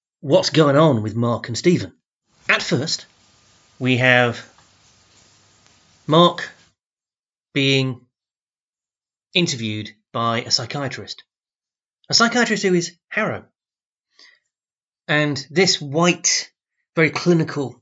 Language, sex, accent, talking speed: English, male, British, 90 wpm